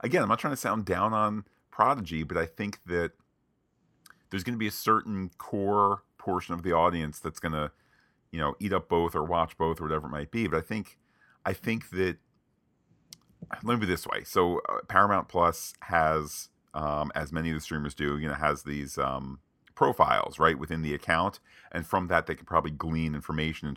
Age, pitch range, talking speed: 40-59, 75-105 Hz, 205 wpm